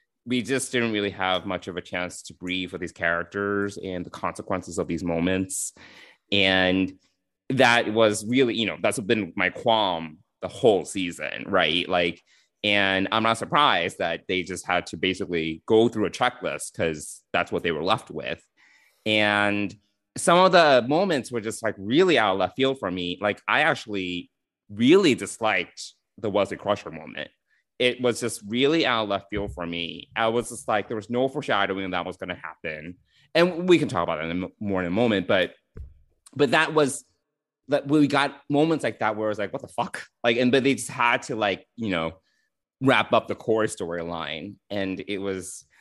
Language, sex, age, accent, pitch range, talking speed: English, male, 30-49, American, 90-135 Hz, 195 wpm